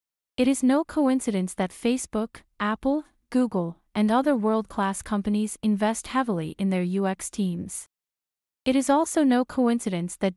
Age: 30-49